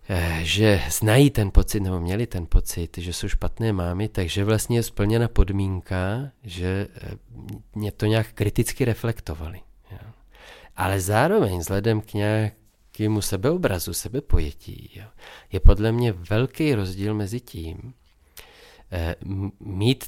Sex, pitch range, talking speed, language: male, 95-110 Hz, 115 wpm, Czech